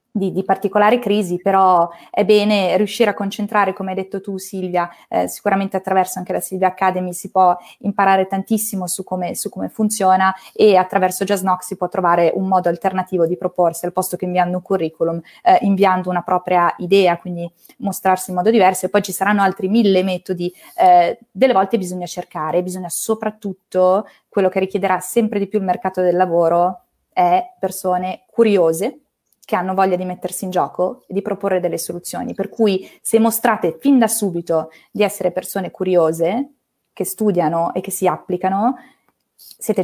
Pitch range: 180-200 Hz